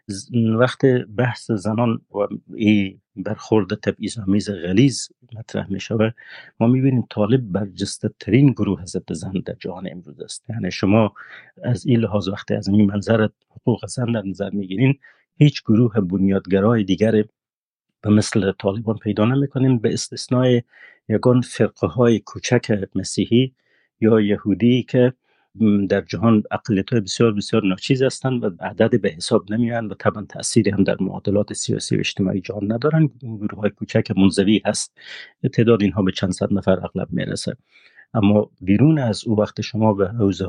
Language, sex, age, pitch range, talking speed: Persian, male, 50-69, 95-115 Hz, 150 wpm